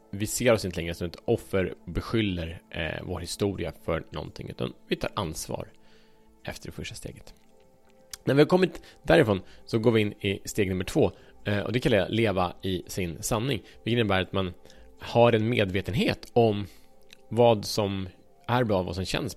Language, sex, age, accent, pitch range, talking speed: Swedish, male, 30-49, Norwegian, 85-110 Hz, 180 wpm